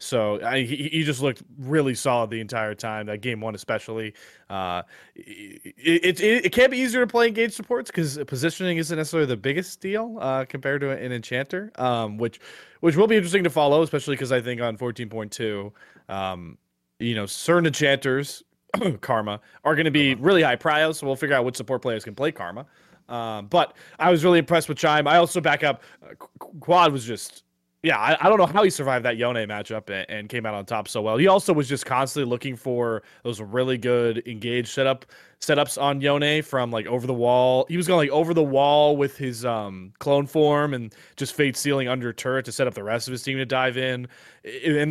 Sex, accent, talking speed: male, American, 220 wpm